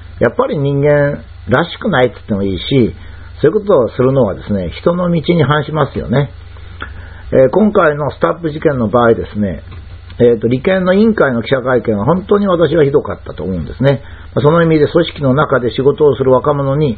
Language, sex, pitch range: Japanese, male, 100-155 Hz